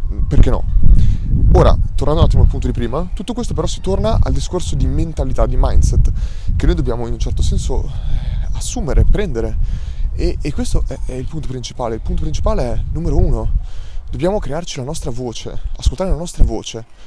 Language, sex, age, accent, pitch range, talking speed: Italian, male, 20-39, native, 115-140 Hz, 185 wpm